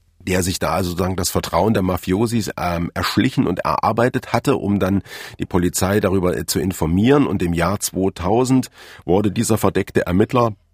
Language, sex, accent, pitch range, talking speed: German, male, German, 90-115 Hz, 160 wpm